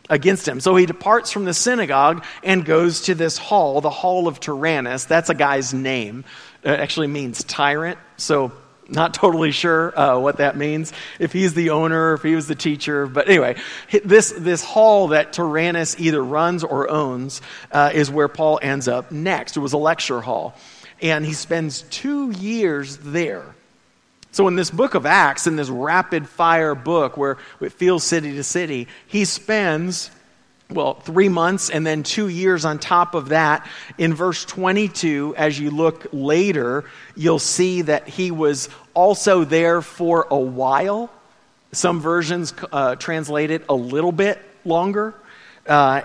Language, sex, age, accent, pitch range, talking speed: English, male, 40-59, American, 145-180 Hz, 165 wpm